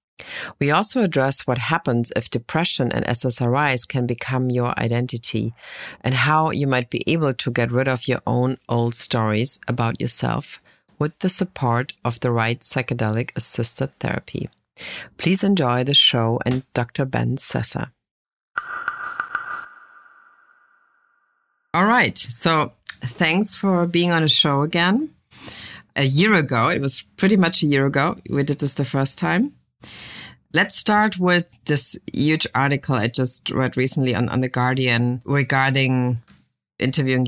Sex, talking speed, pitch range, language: female, 140 wpm, 125-150 Hz, English